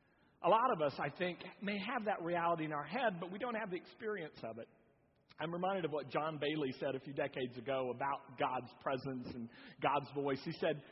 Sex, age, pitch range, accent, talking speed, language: male, 40-59, 145-240 Hz, American, 220 wpm, English